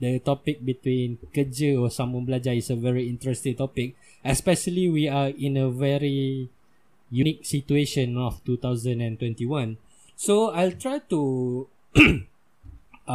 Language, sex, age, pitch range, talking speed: Malay, male, 20-39, 120-150 Hz, 125 wpm